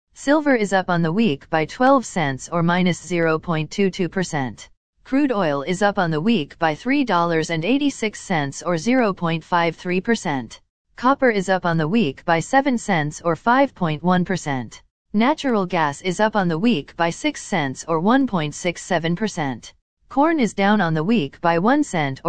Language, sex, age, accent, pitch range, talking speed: English, female, 40-59, American, 160-225 Hz, 135 wpm